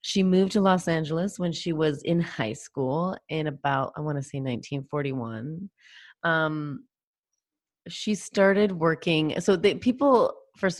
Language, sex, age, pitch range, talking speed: English, female, 30-49, 140-180 Hz, 140 wpm